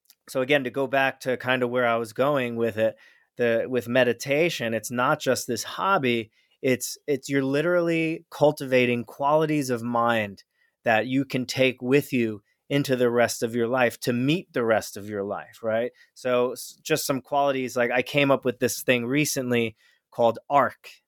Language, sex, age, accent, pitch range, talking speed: English, male, 30-49, American, 115-135 Hz, 180 wpm